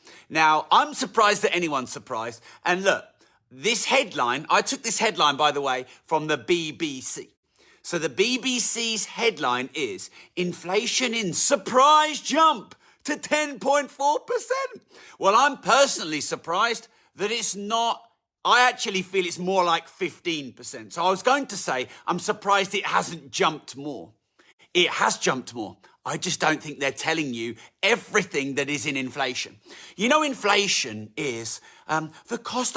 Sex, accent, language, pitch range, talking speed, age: male, British, English, 155-230 Hz, 145 wpm, 40-59